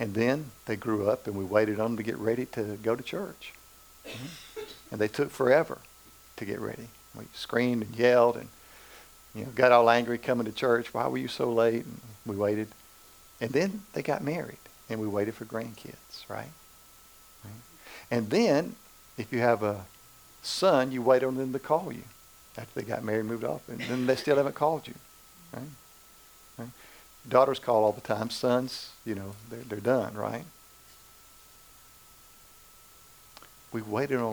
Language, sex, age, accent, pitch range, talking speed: English, male, 50-69, American, 105-125 Hz, 180 wpm